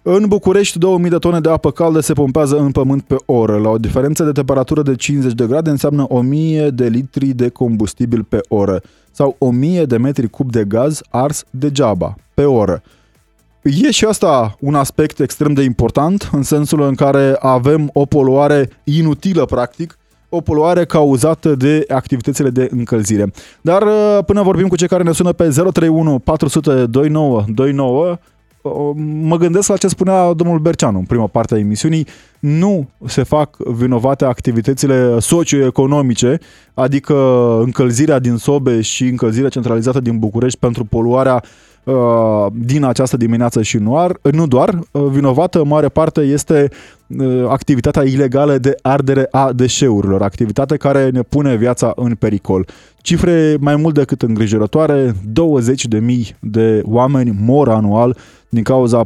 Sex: male